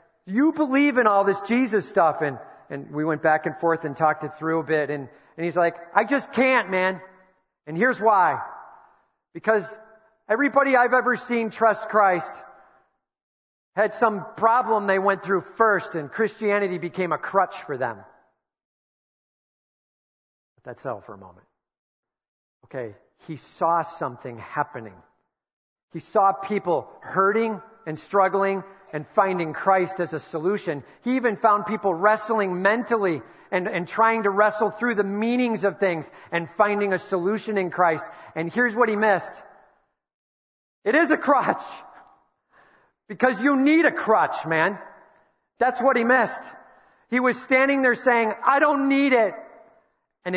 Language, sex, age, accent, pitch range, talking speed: English, male, 40-59, American, 160-225 Hz, 150 wpm